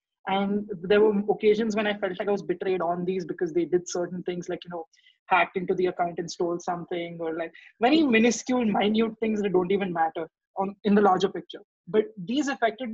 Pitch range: 185-230 Hz